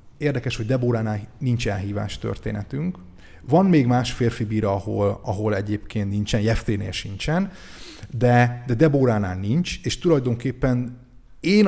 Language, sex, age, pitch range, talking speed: Hungarian, male, 30-49, 110-130 Hz, 125 wpm